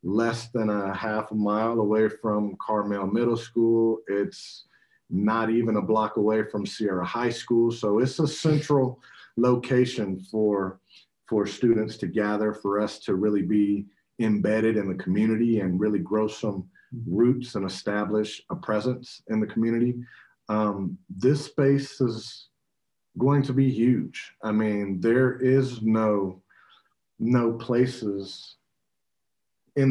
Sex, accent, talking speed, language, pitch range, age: male, American, 135 wpm, English, 100-115 Hz, 40-59